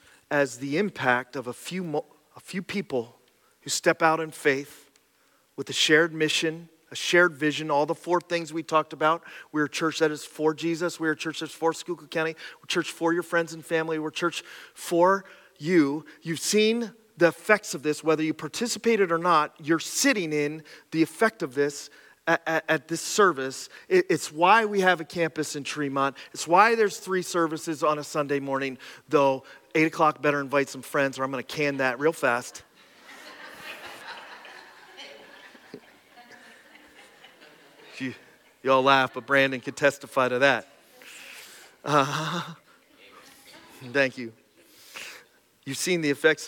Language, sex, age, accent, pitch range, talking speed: English, male, 40-59, American, 145-175 Hz, 165 wpm